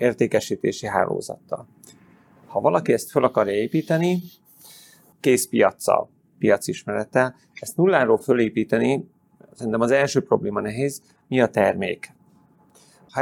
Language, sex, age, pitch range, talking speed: Hungarian, male, 30-49, 110-170 Hz, 110 wpm